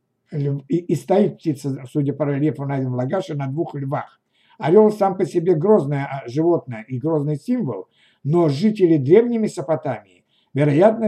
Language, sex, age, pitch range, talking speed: Russian, male, 60-79, 145-180 Hz, 135 wpm